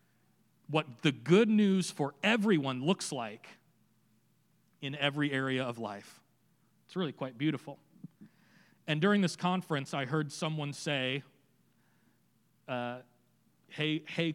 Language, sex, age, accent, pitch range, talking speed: English, male, 40-59, American, 130-175 Hz, 115 wpm